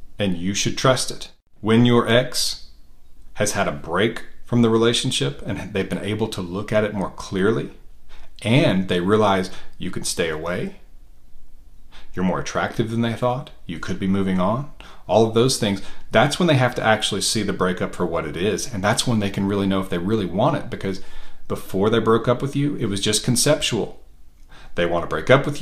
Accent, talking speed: American, 210 wpm